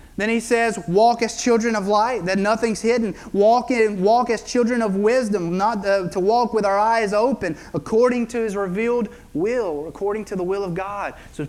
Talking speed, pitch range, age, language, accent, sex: 195 wpm, 165-220 Hz, 30-49, English, American, male